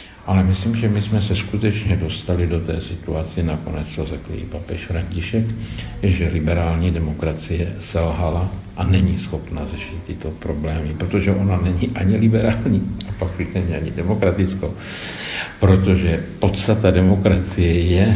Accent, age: native, 60-79